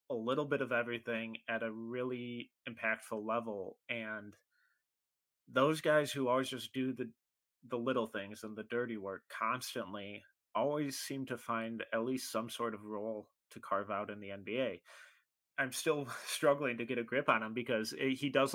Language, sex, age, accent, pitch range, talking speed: English, male, 30-49, American, 110-125 Hz, 180 wpm